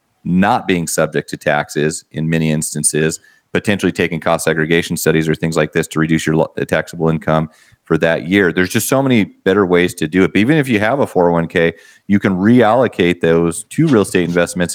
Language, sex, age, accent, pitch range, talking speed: English, male, 30-49, American, 80-95 Hz, 200 wpm